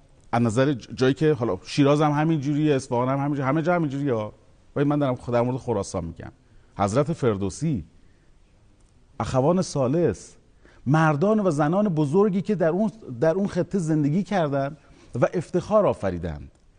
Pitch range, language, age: 110-165 Hz, Persian, 40-59